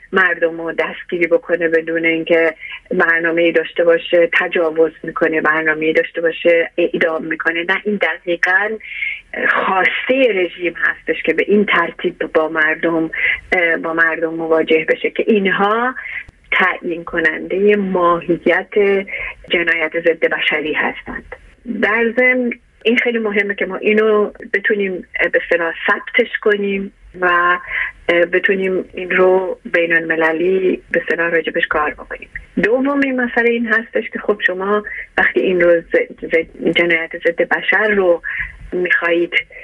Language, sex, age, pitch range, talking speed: English, female, 30-49, 165-210 Hz, 125 wpm